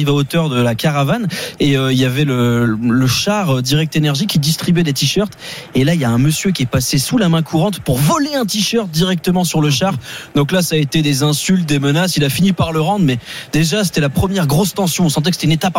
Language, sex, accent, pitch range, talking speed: French, male, French, 145-200 Hz, 260 wpm